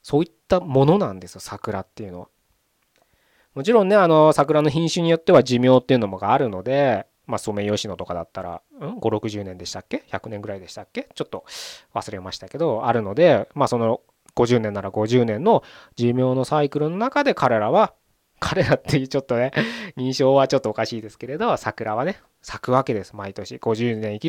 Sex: male